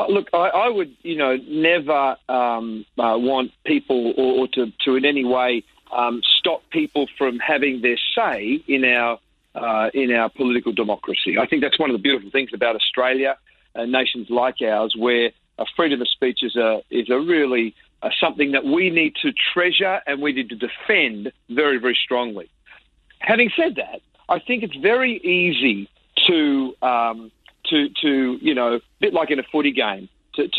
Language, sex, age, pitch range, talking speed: English, male, 40-59, 125-170 Hz, 185 wpm